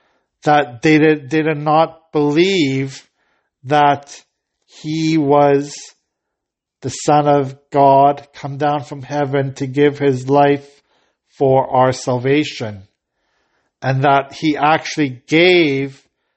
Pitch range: 125-145 Hz